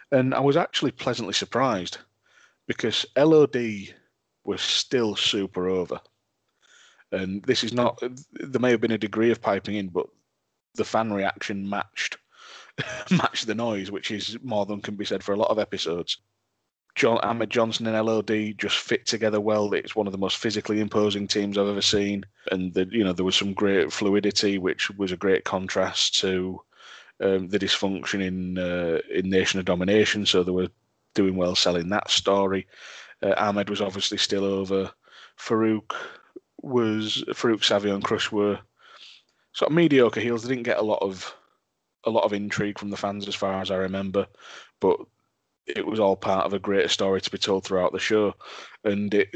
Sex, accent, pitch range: male, British, 95-110 Hz